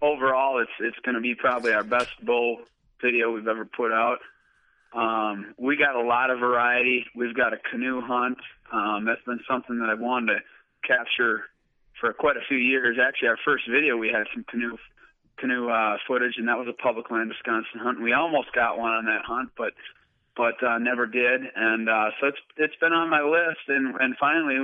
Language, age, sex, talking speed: English, 30-49, male, 200 wpm